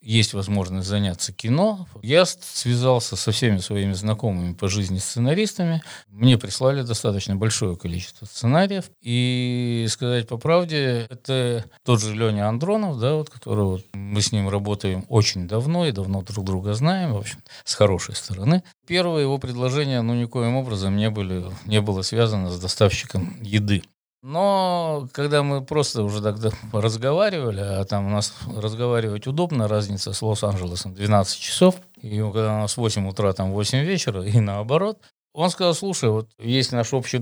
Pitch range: 105-135 Hz